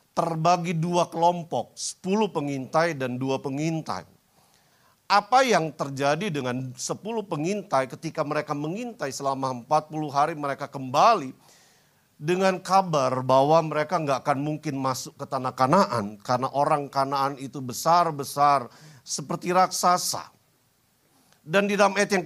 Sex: male